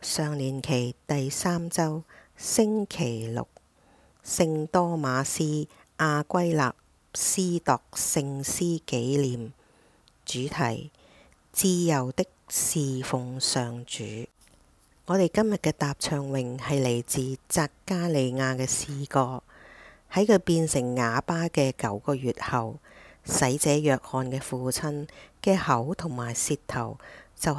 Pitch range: 130-170 Hz